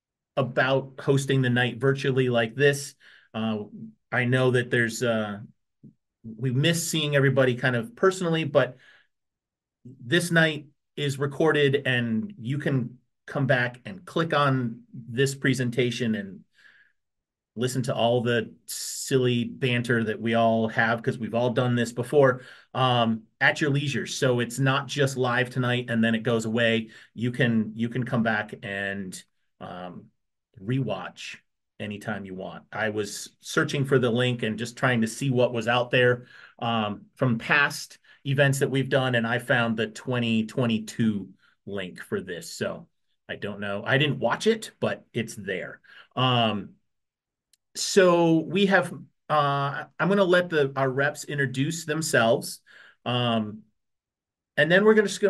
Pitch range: 115-145 Hz